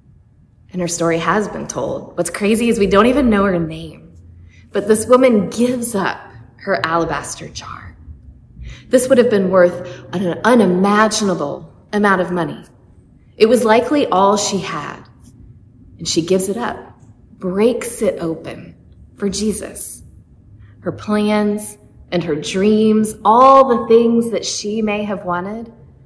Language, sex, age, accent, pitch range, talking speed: English, female, 20-39, American, 175-220 Hz, 145 wpm